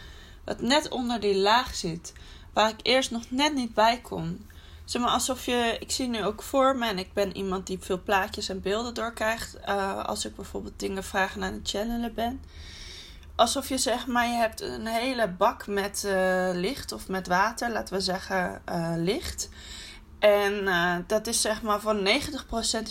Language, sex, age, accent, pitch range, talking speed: Dutch, female, 20-39, Dutch, 180-230 Hz, 190 wpm